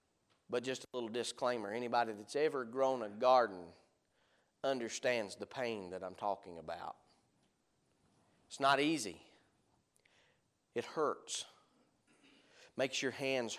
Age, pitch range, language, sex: 40-59, 120-165 Hz, English, male